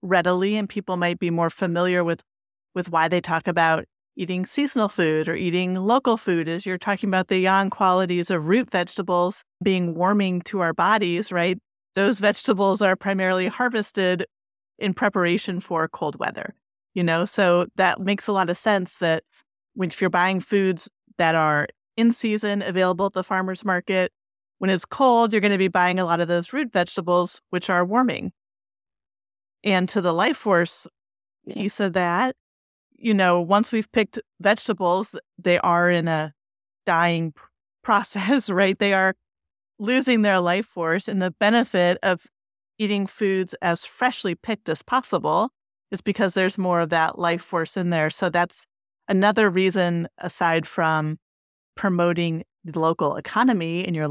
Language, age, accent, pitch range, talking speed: English, 30-49, American, 170-200 Hz, 160 wpm